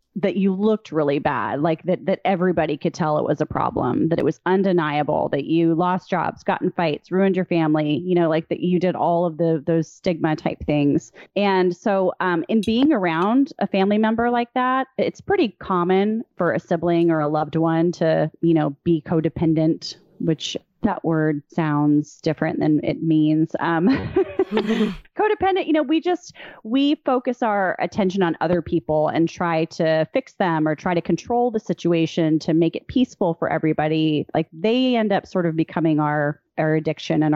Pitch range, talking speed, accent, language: 160-195 Hz, 190 wpm, American, English